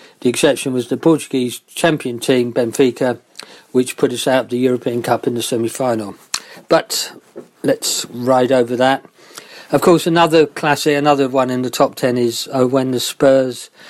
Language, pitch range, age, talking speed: English, 120-145 Hz, 40-59, 170 wpm